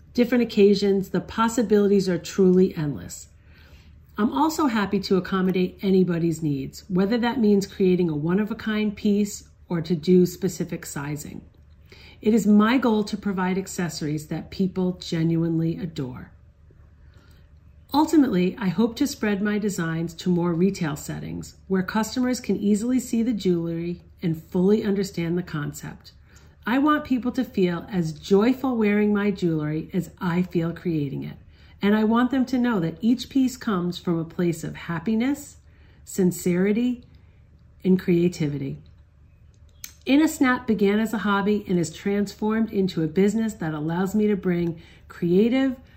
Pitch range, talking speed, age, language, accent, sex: 165-210 Hz, 150 wpm, 40-59, English, American, female